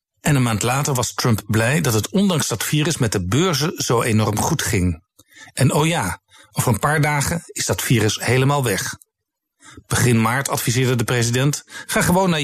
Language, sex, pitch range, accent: Dutch, male, 115-150 Hz, Dutch